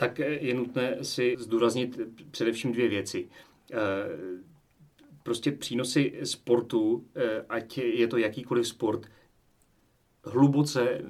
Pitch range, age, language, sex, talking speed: 110-130 Hz, 30-49, Czech, male, 90 wpm